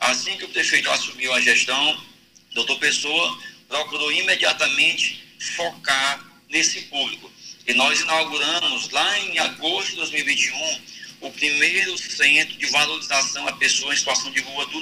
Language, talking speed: Portuguese, 140 wpm